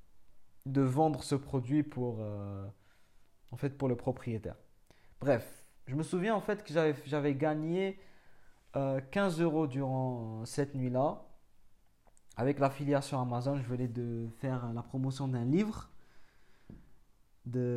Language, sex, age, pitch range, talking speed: French, male, 20-39, 120-145 Hz, 130 wpm